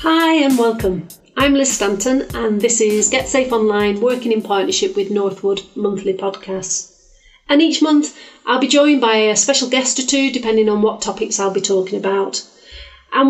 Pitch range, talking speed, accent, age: 200-265 Hz, 180 wpm, British, 40-59